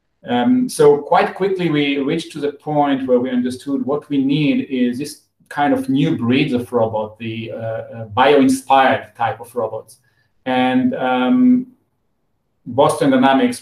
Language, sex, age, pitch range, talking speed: English, male, 40-59, 120-150 Hz, 145 wpm